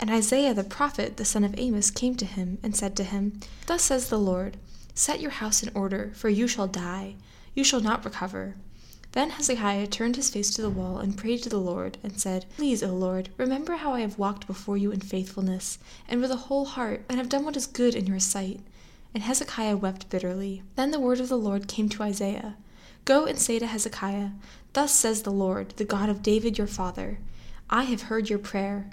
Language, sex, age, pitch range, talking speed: English, female, 10-29, 195-235 Hz, 220 wpm